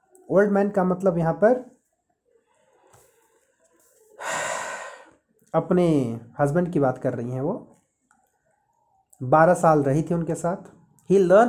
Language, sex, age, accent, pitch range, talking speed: Hindi, male, 30-49, native, 160-235 Hz, 115 wpm